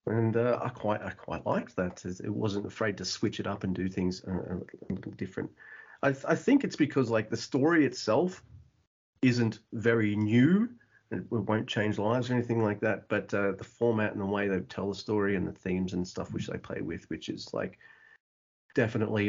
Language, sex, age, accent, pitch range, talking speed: English, male, 30-49, Australian, 100-140 Hz, 210 wpm